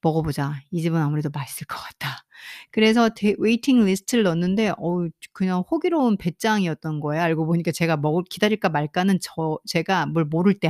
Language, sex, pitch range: Korean, female, 160-225 Hz